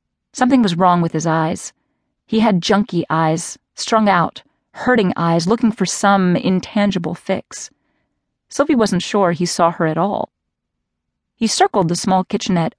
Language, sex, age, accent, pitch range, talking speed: English, female, 30-49, American, 165-205 Hz, 150 wpm